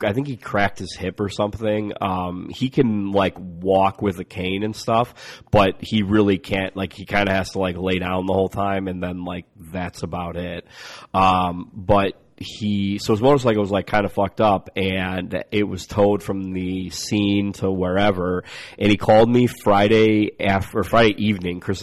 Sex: male